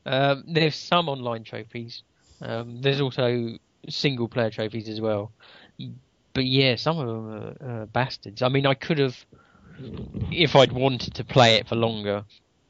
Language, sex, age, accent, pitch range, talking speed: English, male, 20-39, British, 110-130 Hz, 155 wpm